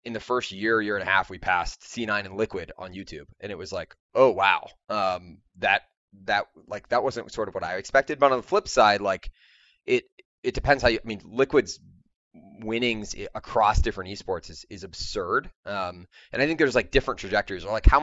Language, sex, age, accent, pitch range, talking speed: English, male, 20-39, American, 95-120 Hz, 215 wpm